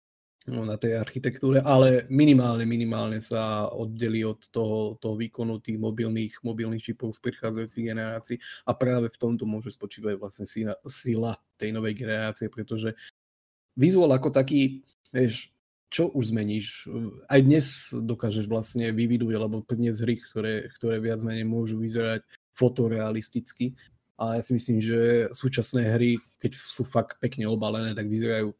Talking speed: 145 wpm